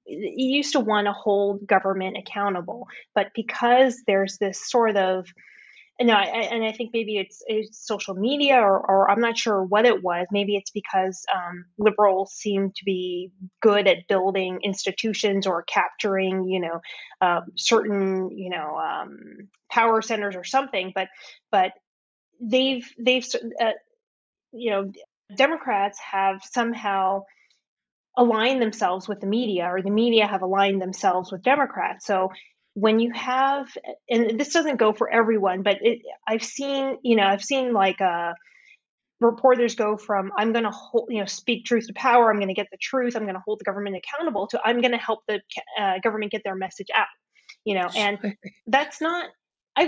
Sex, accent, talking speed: female, American, 170 wpm